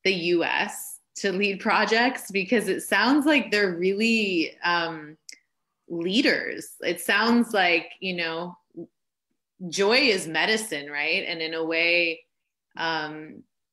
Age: 20-39